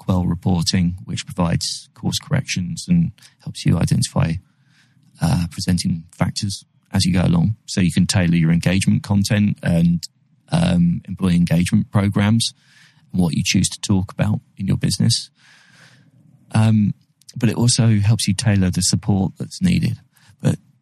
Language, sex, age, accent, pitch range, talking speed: English, male, 20-39, British, 95-140 Hz, 145 wpm